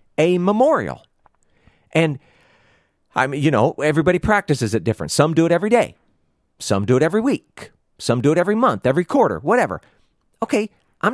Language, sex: English, male